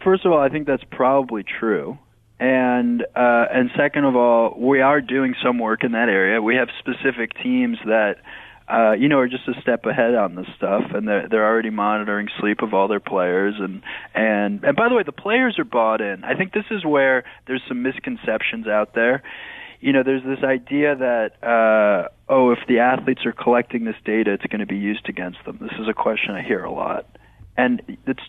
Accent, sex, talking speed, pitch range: American, male, 210 wpm, 110-135 Hz